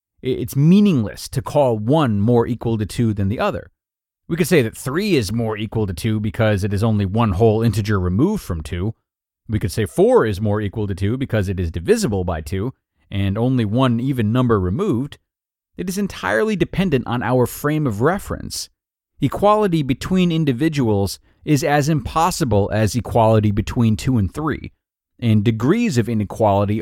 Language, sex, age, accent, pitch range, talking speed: English, male, 30-49, American, 105-145 Hz, 175 wpm